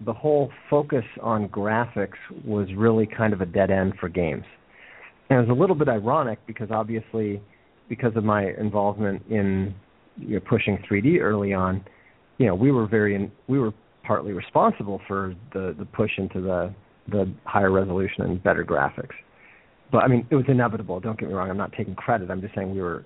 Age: 40-59